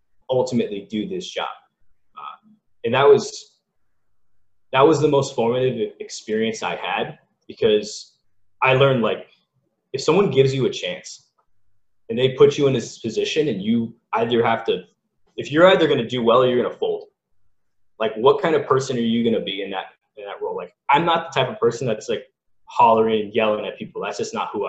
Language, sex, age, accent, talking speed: English, male, 20-39, American, 200 wpm